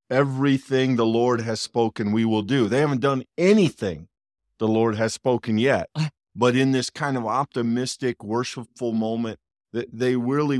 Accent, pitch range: American, 100-125 Hz